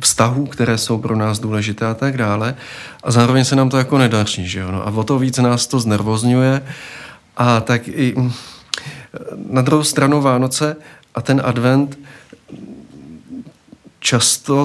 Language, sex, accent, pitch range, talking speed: Czech, male, native, 110-135 Hz, 150 wpm